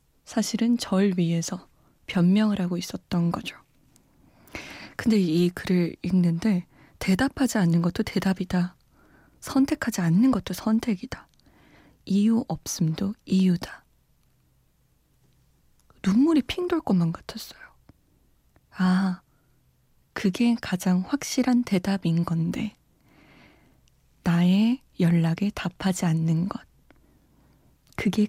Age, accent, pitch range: 20-39, native, 170-220 Hz